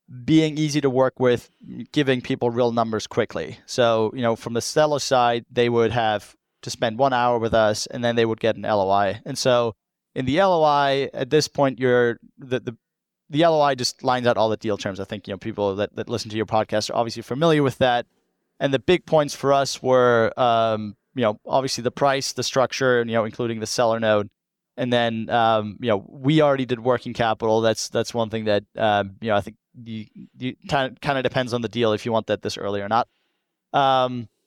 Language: English